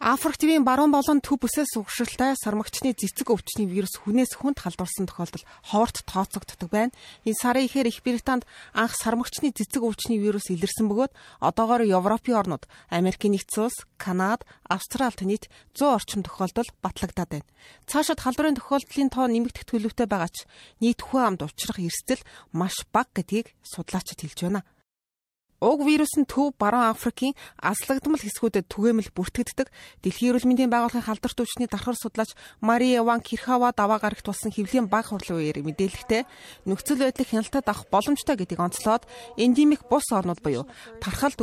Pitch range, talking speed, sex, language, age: 200-255 Hz, 125 wpm, female, English, 30-49